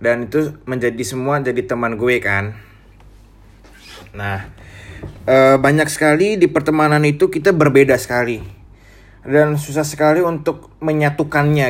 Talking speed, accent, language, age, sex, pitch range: 120 wpm, native, Indonesian, 20-39, male, 110-150 Hz